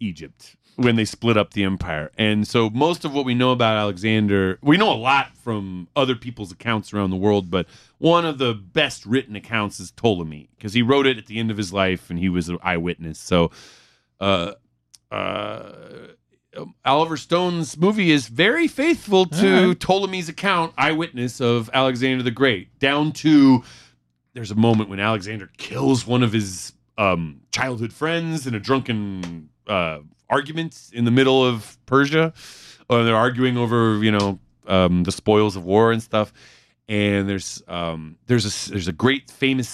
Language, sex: English, male